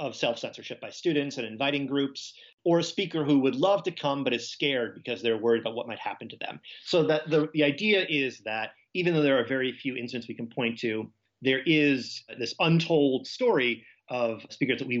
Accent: American